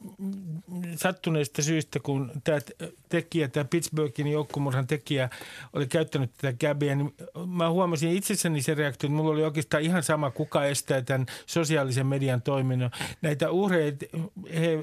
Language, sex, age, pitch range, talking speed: Finnish, male, 50-69, 145-185 Hz, 140 wpm